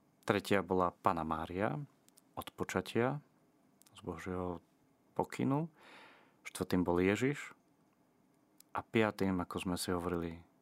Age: 30-49